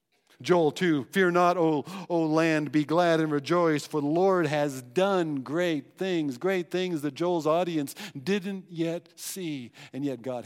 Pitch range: 125-175 Hz